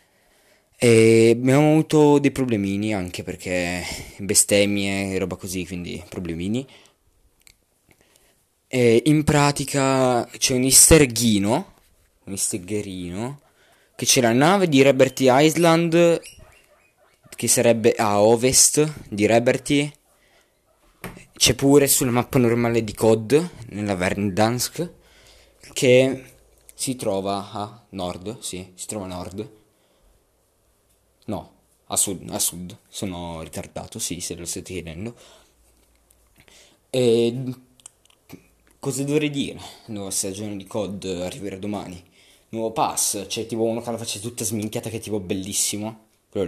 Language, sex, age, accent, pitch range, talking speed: Italian, male, 20-39, native, 95-125 Hz, 120 wpm